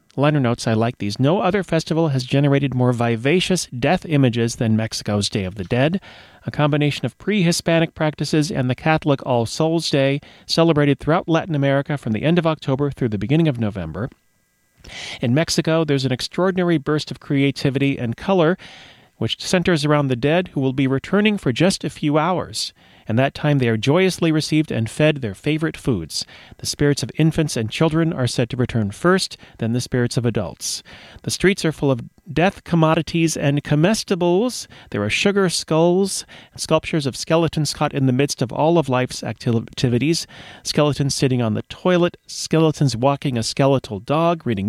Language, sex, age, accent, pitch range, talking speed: English, male, 40-59, American, 125-165 Hz, 180 wpm